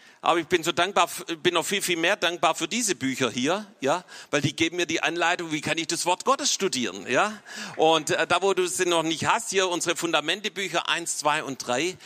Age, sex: 50-69, male